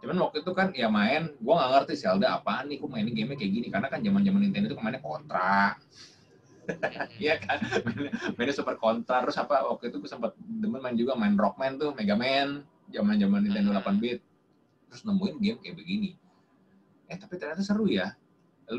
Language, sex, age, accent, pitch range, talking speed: Indonesian, male, 20-39, native, 150-210 Hz, 190 wpm